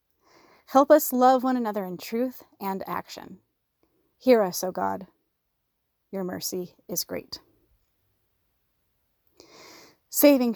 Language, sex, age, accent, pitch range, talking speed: English, female, 30-49, American, 190-250 Hz, 100 wpm